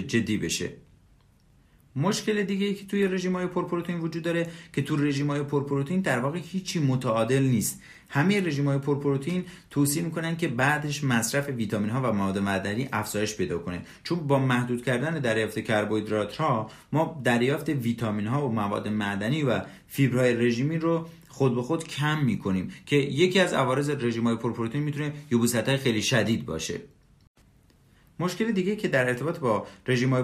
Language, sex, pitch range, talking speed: Persian, male, 115-150 Hz, 155 wpm